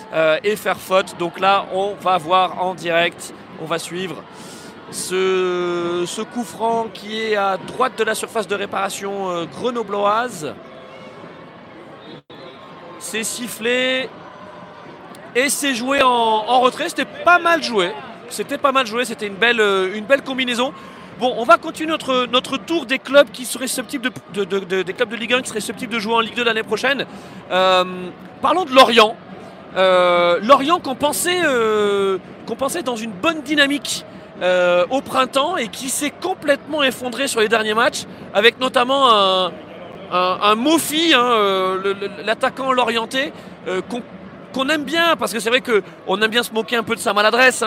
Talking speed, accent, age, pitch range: 165 wpm, French, 40-59, 190-260 Hz